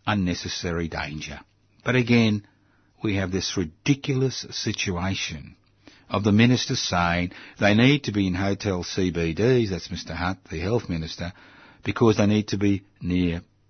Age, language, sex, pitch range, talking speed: 50-69, English, male, 90-105 Hz, 140 wpm